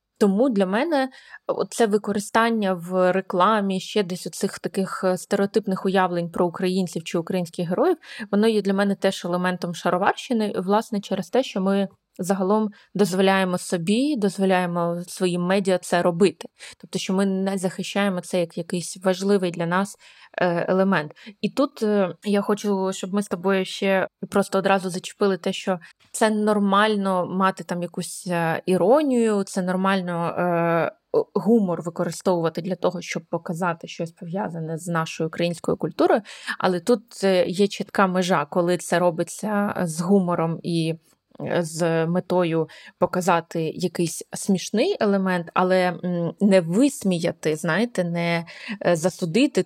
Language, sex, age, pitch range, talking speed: Ukrainian, female, 20-39, 175-205 Hz, 130 wpm